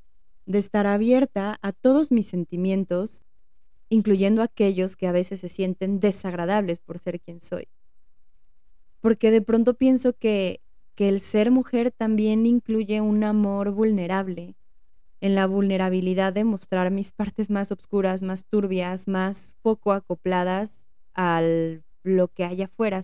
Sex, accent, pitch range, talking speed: female, Mexican, 180-210 Hz, 135 wpm